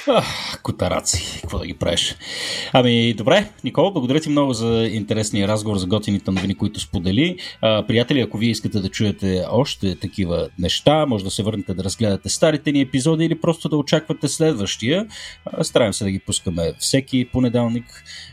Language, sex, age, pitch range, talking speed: Bulgarian, male, 30-49, 100-145 Hz, 165 wpm